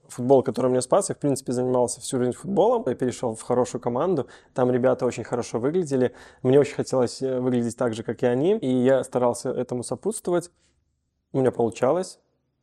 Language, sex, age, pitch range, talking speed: Russian, male, 20-39, 125-140 Hz, 180 wpm